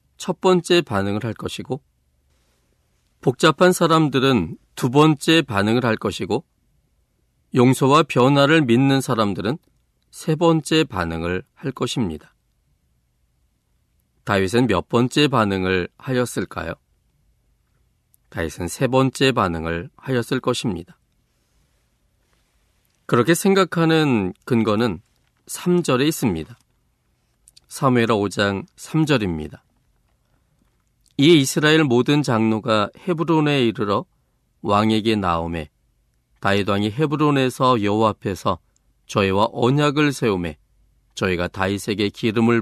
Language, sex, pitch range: Korean, male, 90-145 Hz